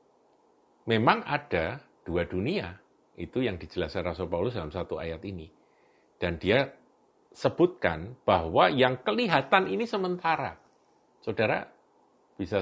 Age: 50-69